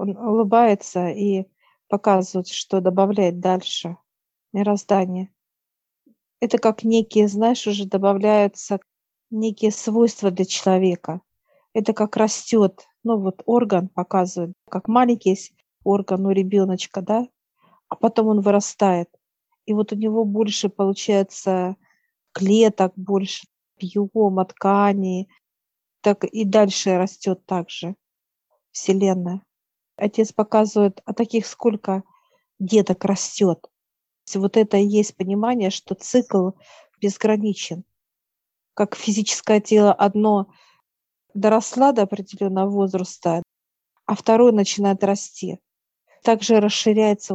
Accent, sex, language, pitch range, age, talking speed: native, female, Russian, 190-215 Hz, 50-69, 105 wpm